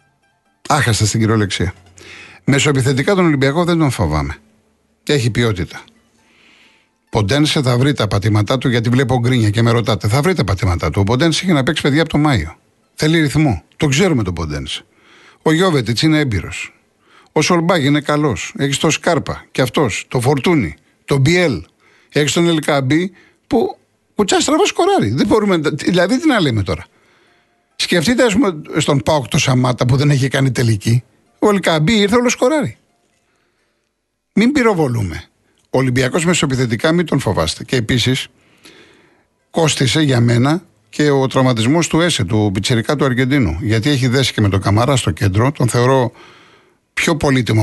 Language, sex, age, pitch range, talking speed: Greek, male, 50-69, 110-155 Hz, 155 wpm